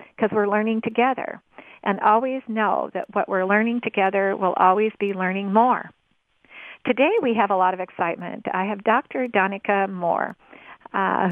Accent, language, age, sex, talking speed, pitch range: American, English, 50-69, female, 160 wpm, 185-215 Hz